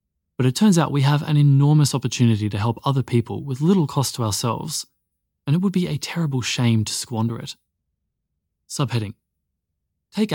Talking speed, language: 175 wpm, English